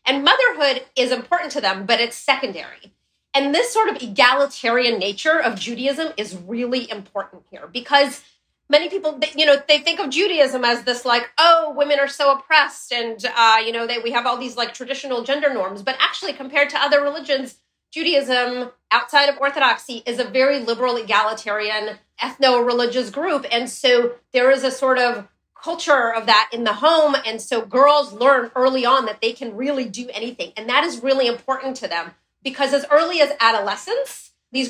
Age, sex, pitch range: 30-49, female, 235-285 Hz